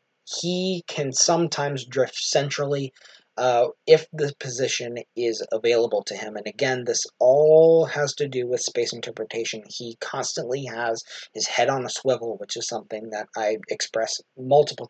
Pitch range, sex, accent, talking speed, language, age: 115-145 Hz, male, American, 155 wpm, English, 20-39